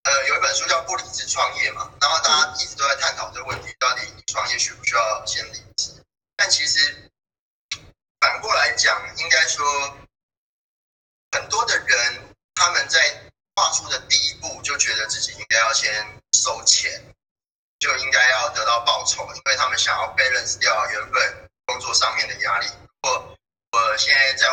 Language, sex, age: Chinese, male, 20-39